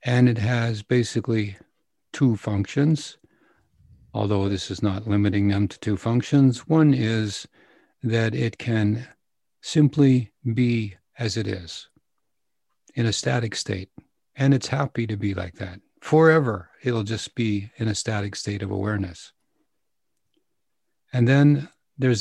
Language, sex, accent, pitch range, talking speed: English, male, American, 105-125 Hz, 130 wpm